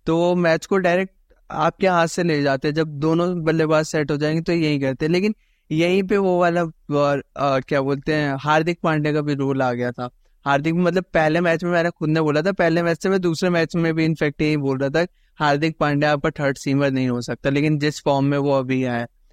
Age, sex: 20-39, male